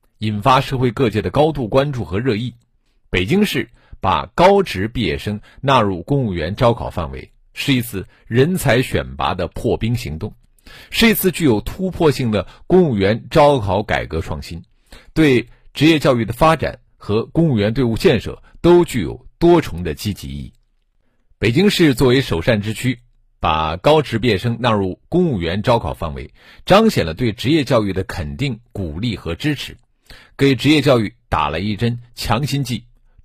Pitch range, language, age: 95-135 Hz, Chinese, 50-69